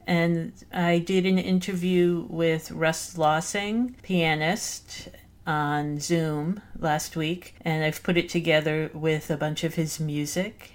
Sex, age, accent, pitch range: female, 50-69, American, 145-170 Hz